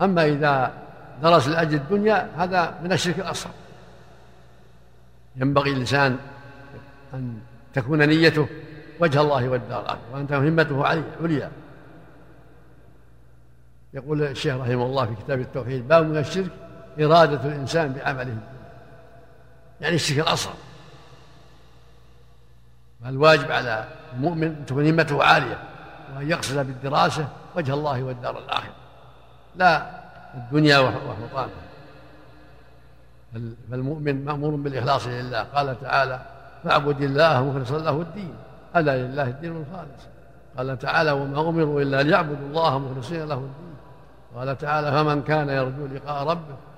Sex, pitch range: male, 135-160 Hz